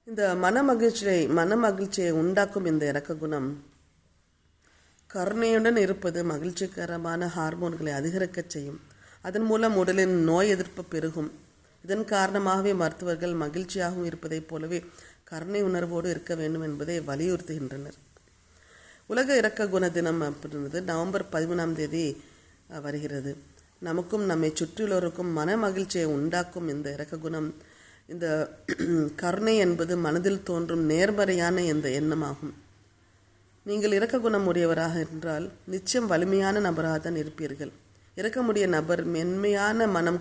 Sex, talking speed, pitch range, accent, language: female, 100 wpm, 150-185 Hz, native, Tamil